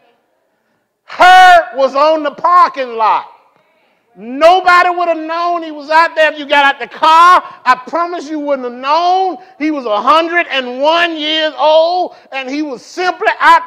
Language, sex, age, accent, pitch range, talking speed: English, male, 50-69, American, 200-320 Hz, 160 wpm